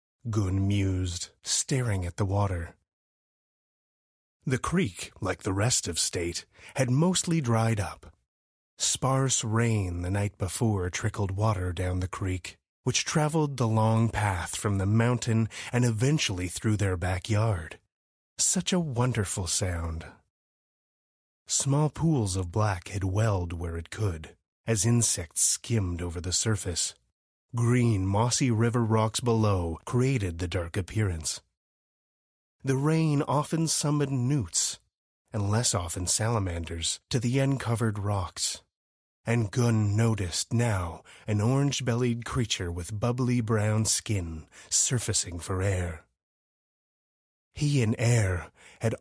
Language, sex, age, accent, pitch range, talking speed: English, male, 30-49, American, 90-120 Hz, 120 wpm